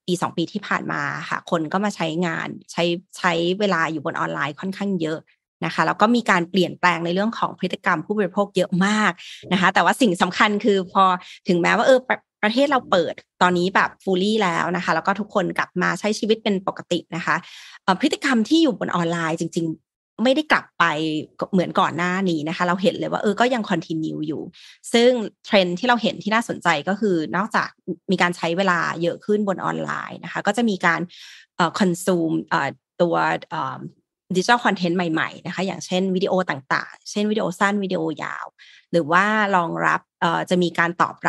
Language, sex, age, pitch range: Thai, female, 30-49, 170-205 Hz